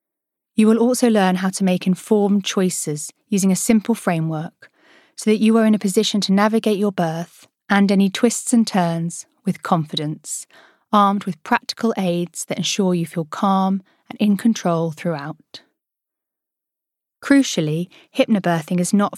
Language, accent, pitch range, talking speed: English, British, 180-225 Hz, 150 wpm